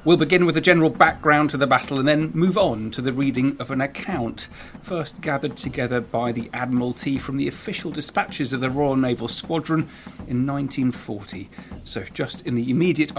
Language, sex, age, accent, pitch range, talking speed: English, male, 40-59, British, 115-150 Hz, 185 wpm